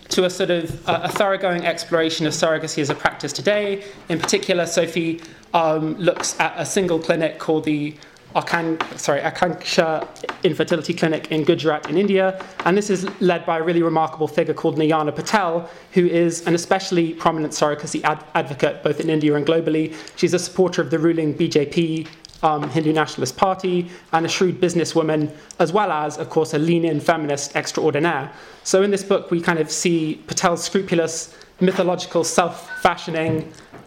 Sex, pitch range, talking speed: male, 155-175 Hz, 165 wpm